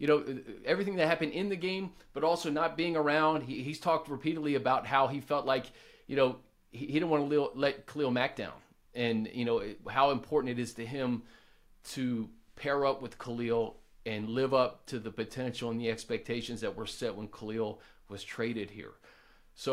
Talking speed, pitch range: 205 wpm, 125-165 Hz